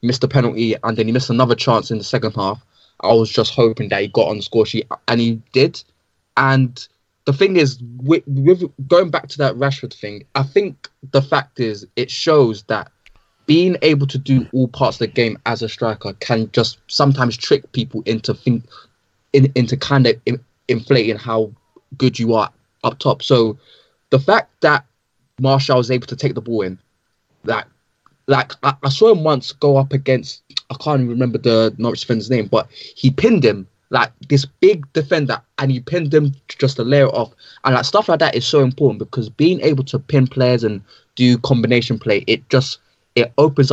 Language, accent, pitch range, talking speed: English, British, 115-135 Hz, 200 wpm